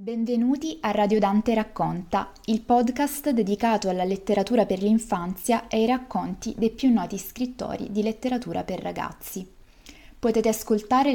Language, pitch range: Italian, 190-235 Hz